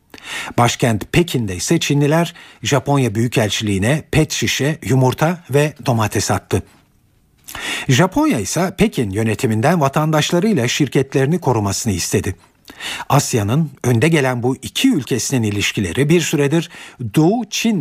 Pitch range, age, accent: 115-160 Hz, 50-69, native